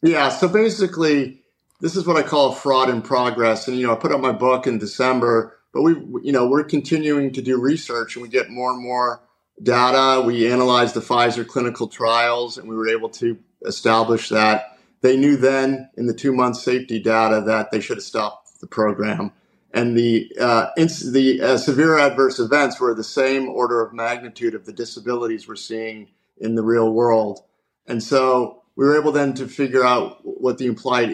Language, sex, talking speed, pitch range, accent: English, male, 190 wpm, 115-135 Hz, American